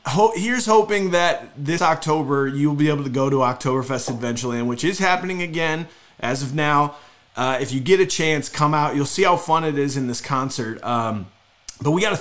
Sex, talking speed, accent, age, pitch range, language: male, 215 wpm, American, 30-49, 125-160 Hz, English